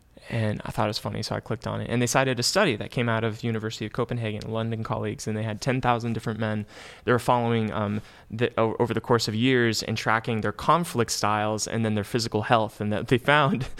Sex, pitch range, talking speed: male, 110-140 Hz, 240 wpm